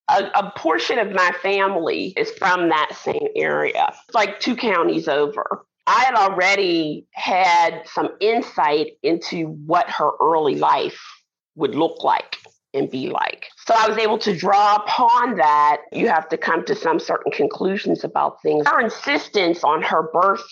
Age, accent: 40-59, American